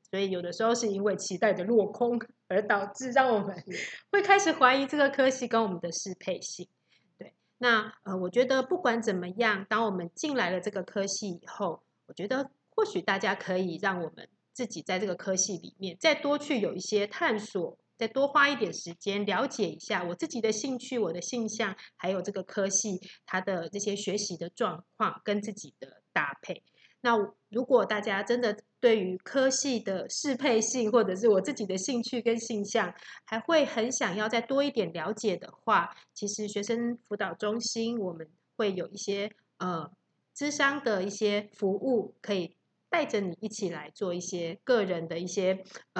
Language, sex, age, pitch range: Chinese, female, 30-49, 185-235 Hz